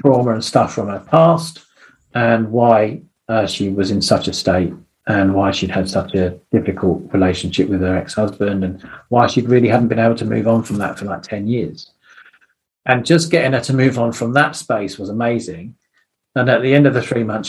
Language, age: English, 40-59